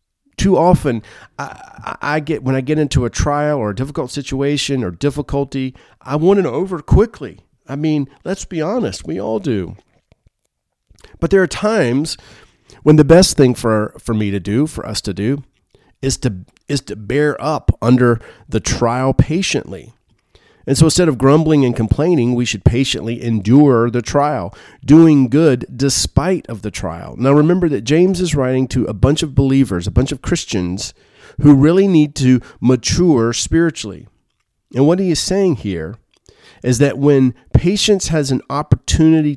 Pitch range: 115-150 Hz